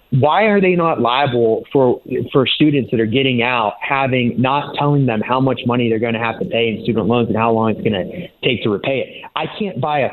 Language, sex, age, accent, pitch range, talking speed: English, male, 30-49, American, 120-150 Hz, 250 wpm